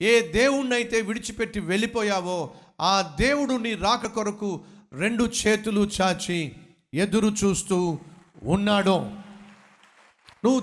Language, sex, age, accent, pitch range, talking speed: Telugu, male, 50-69, native, 145-205 Hz, 90 wpm